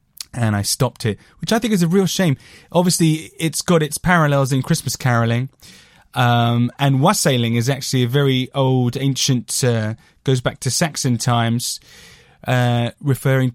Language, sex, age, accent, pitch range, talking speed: English, male, 20-39, British, 120-150 Hz, 160 wpm